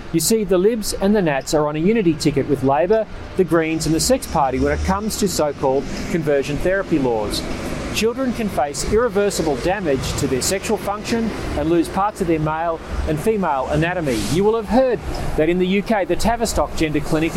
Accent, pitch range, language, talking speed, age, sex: Australian, 145-200 Hz, English, 200 wpm, 40-59, male